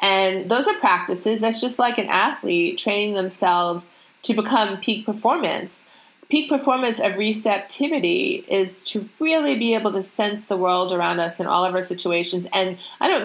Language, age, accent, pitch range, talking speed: English, 30-49, American, 190-230 Hz, 170 wpm